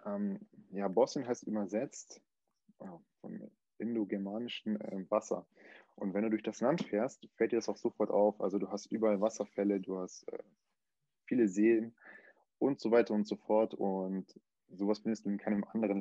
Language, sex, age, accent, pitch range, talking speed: German, male, 20-39, German, 100-110 Hz, 155 wpm